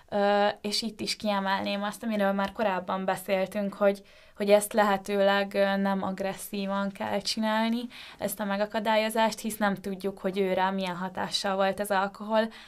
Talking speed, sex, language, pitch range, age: 150 wpm, female, English, 195-215 Hz, 20-39